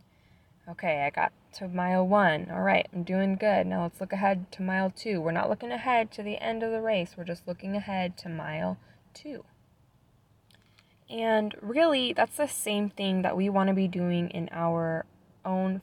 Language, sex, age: English, female, 10-29